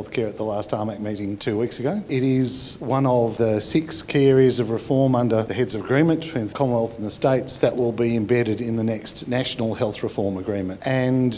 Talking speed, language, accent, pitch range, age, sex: 220 wpm, English, Australian, 110-130 Hz, 50-69, male